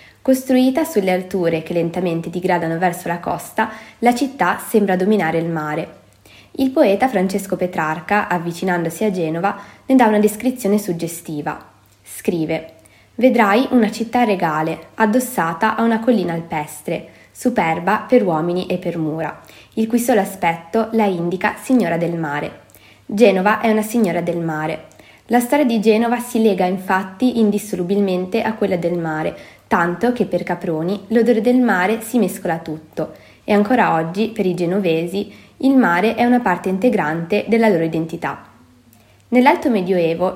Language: Italian